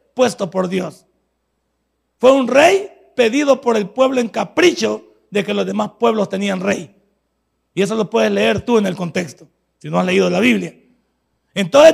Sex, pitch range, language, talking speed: male, 200-280 Hz, Spanish, 175 wpm